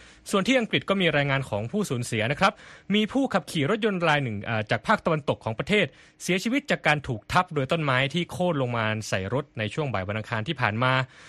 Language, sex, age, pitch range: Thai, male, 20-39, 115-155 Hz